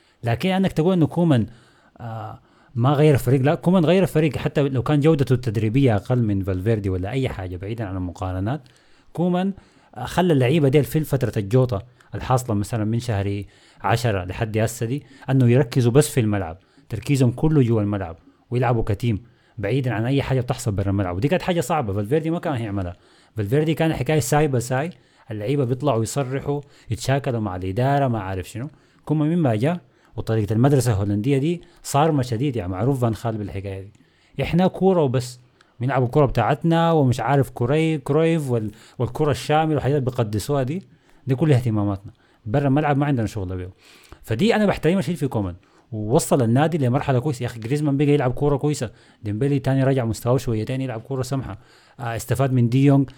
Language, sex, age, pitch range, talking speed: Arabic, male, 30-49, 110-145 Hz, 165 wpm